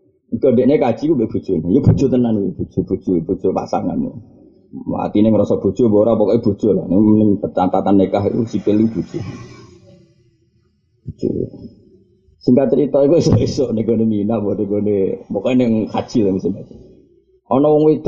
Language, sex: Indonesian, male